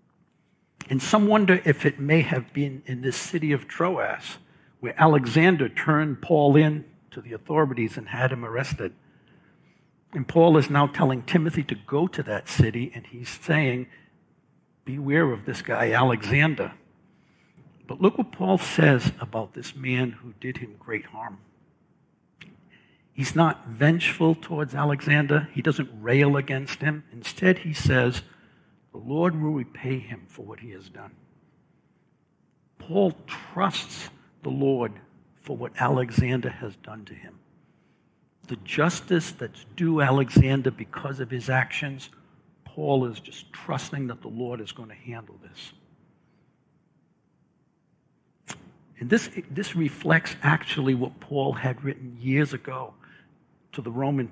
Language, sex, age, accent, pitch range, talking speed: English, male, 60-79, American, 130-160 Hz, 140 wpm